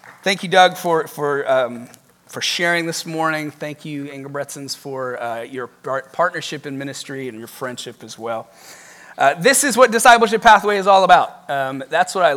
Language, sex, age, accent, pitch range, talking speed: English, male, 30-49, American, 150-215 Hz, 185 wpm